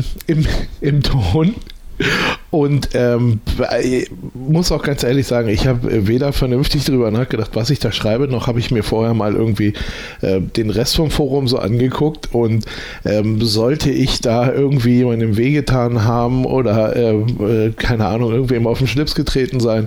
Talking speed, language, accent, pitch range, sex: 165 wpm, German, German, 110-130 Hz, male